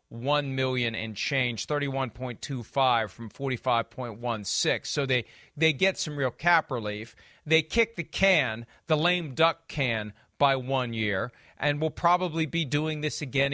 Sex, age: male, 40-59